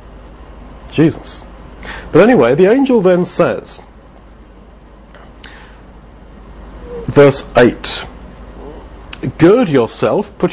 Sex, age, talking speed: male, 50-69, 70 wpm